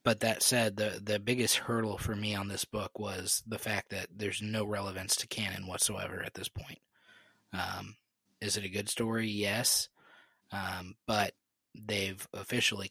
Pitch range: 95-110 Hz